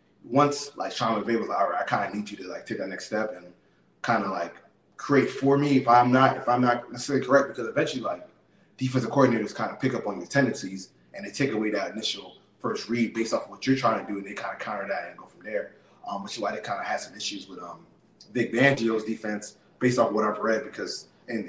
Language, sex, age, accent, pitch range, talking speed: English, male, 20-39, American, 115-140 Hz, 250 wpm